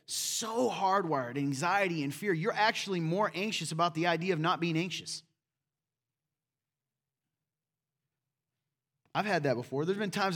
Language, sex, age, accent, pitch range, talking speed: English, male, 30-49, American, 135-165 Hz, 135 wpm